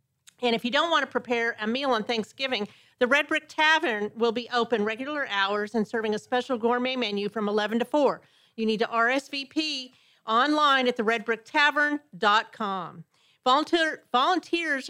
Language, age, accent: English, 40-59, American